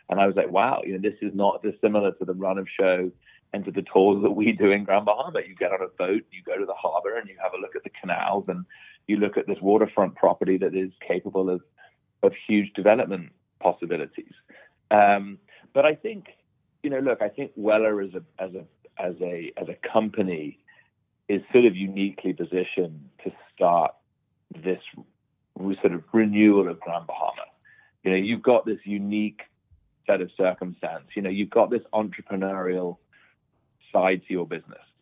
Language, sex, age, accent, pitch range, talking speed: English, male, 40-59, British, 90-105 Hz, 190 wpm